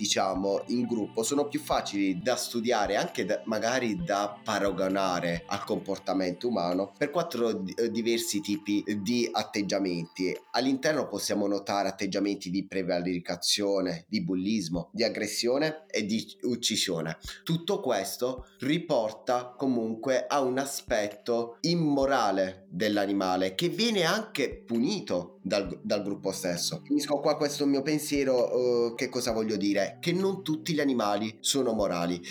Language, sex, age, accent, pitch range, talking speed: Italian, male, 30-49, native, 100-130 Hz, 130 wpm